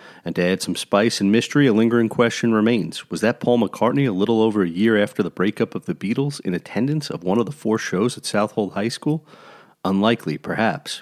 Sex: male